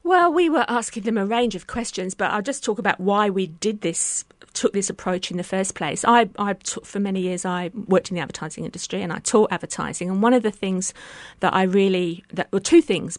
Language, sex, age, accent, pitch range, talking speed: English, female, 50-69, British, 185-225 Hz, 245 wpm